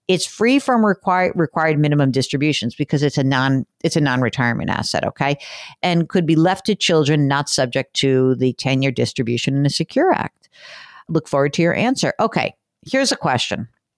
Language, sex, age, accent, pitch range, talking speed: English, female, 50-69, American, 150-235 Hz, 180 wpm